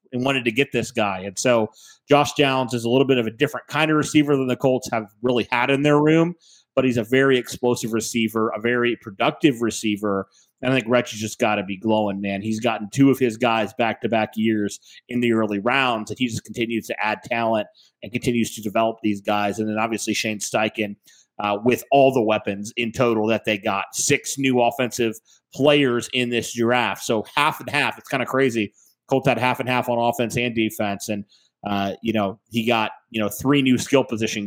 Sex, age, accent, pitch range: male, 30-49, American, 110-130 Hz